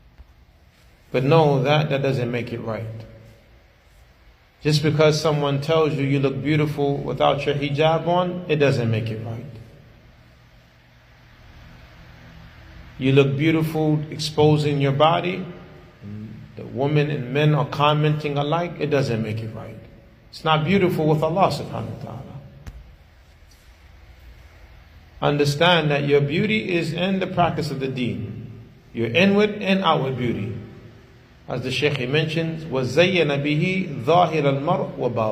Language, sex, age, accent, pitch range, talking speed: English, male, 30-49, American, 110-160 Hz, 125 wpm